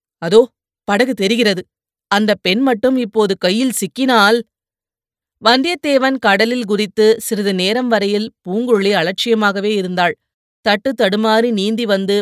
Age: 20-39